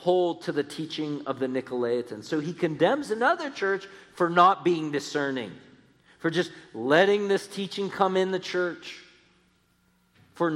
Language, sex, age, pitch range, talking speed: English, male, 40-59, 100-170 Hz, 150 wpm